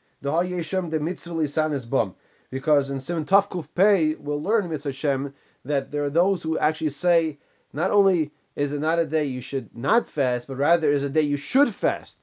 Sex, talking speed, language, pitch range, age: male, 180 wpm, English, 135-165 Hz, 30-49